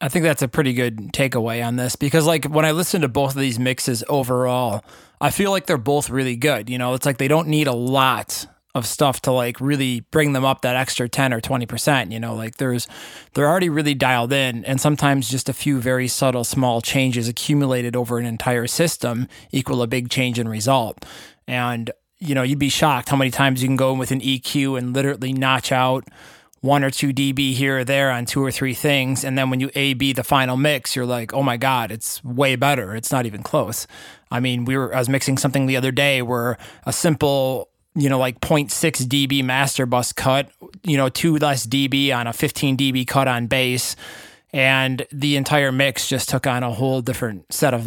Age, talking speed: 20-39, 220 wpm